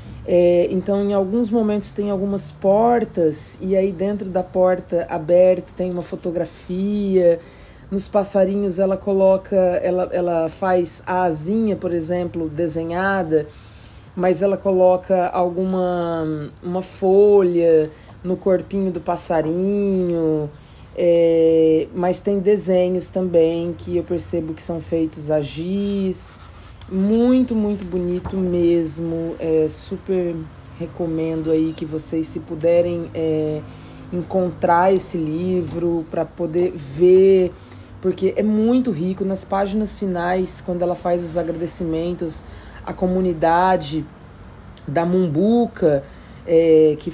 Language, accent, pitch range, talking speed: Portuguese, Brazilian, 160-190 Hz, 105 wpm